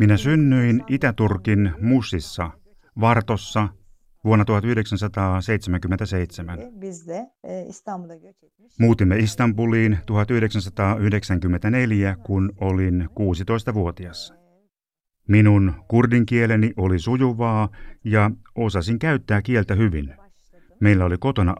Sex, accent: male, native